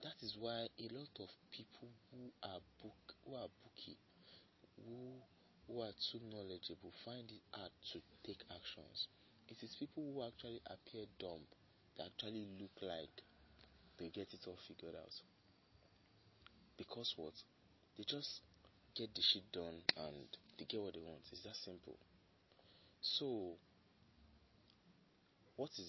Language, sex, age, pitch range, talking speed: English, male, 30-49, 90-110 Hz, 135 wpm